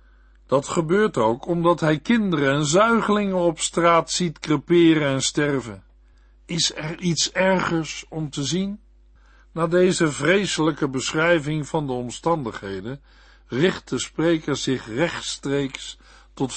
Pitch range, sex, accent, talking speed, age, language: 125-175 Hz, male, Dutch, 125 wpm, 60-79, Dutch